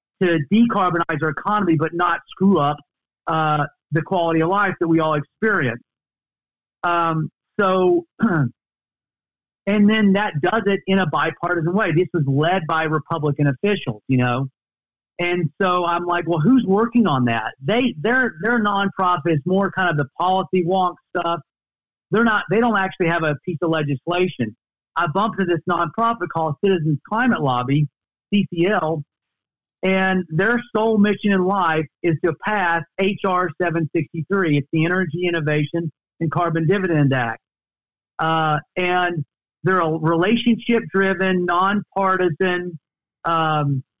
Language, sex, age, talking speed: English, male, 50-69, 140 wpm